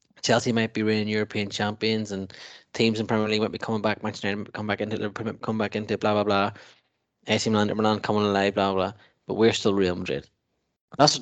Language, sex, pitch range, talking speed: English, male, 105-125 Hz, 215 wpm